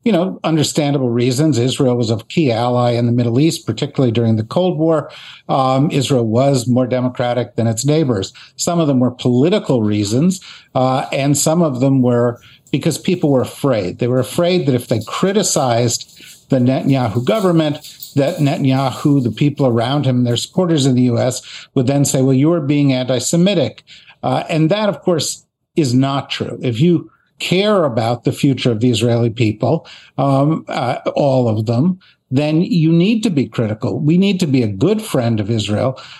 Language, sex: English, male